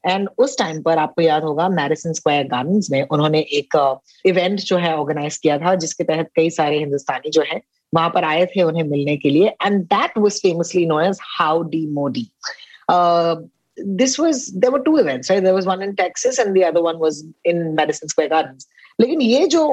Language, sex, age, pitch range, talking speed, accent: Hindi, female, 20-39, 160-215 Hz, 75 wpm, native